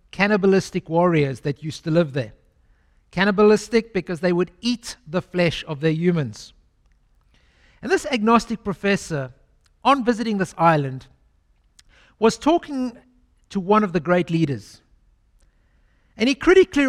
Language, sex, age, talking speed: English, male, 60-79, 130 wpm